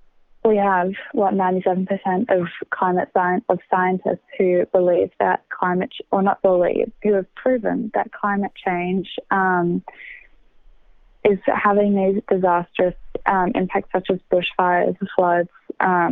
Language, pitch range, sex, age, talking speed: English, 180-205 Hz, female, 20-39, 125 wpm